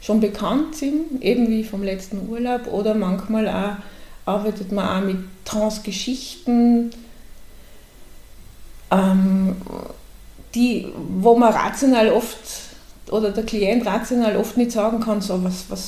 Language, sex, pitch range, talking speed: German, female, 205-240 Hz, 125 wpm